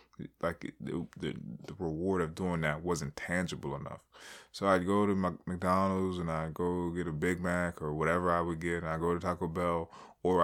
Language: English